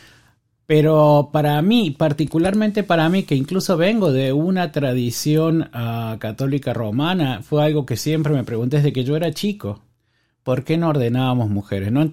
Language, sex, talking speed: Spanish, male, 160 wpm